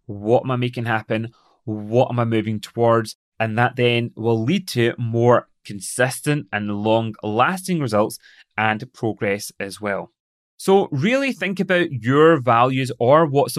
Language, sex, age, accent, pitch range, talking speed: English, male, 30-49, British, 115-160 Hz, 150 wpm